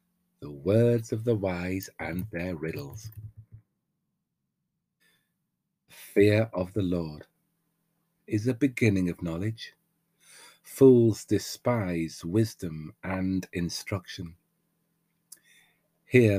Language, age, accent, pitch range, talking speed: English, 50-69, British, 100-150 Hz, 85 wpm